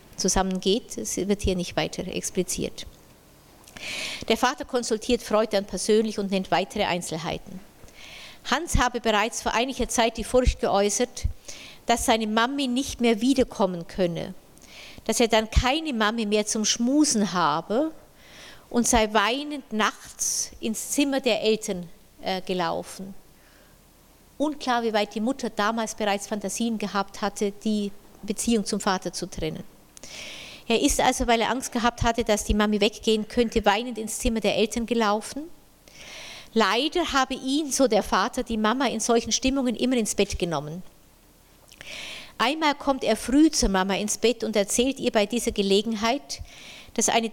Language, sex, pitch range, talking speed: German, female, 205-250 Hz, 150 wpm